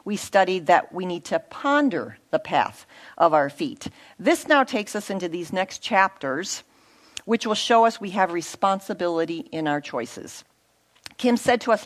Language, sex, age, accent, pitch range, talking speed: English, female, 50-69, American, 175-230 Hz, 170 wpm